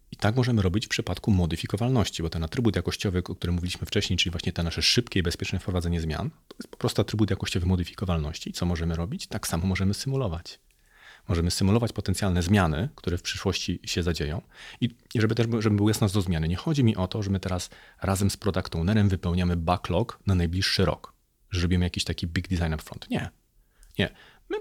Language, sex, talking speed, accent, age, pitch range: Polish, male, 200 wpm, native, 40-59, 90-115 Hz